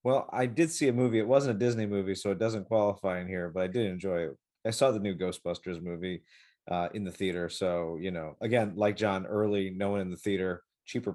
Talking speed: 240 wpm